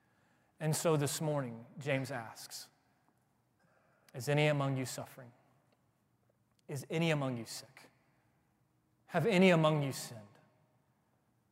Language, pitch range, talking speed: English, 130-165 Hz, 110 wpm